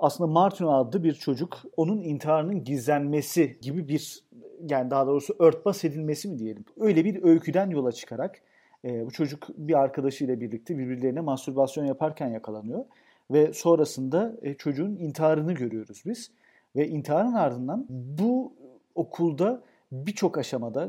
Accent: native